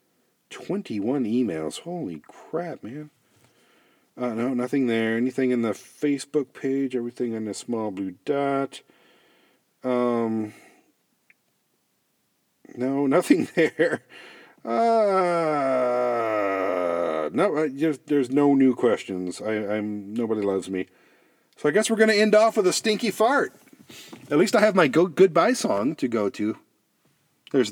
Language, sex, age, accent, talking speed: English, male, 40-59, American, 130 wpm